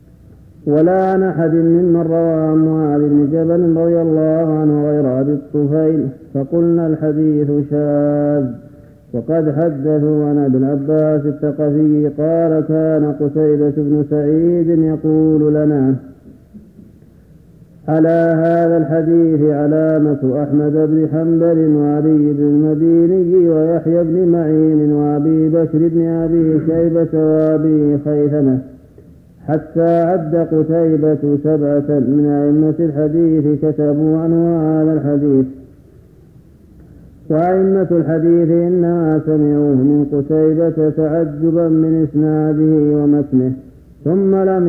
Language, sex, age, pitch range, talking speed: Arabic, male, 50-69, 145-165 Hz, 95 wpm